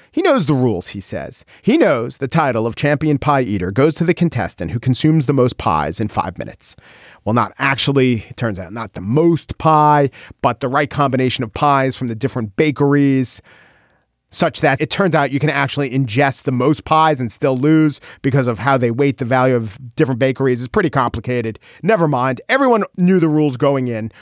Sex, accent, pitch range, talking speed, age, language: male, American, 125-165 Hz, 205 wpm, 40-59, English